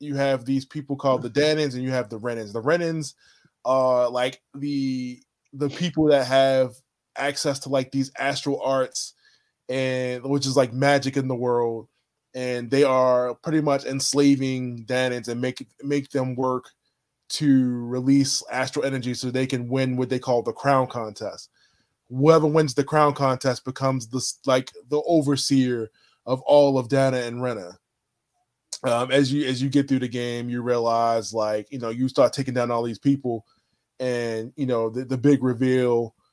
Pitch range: 120-140 Hz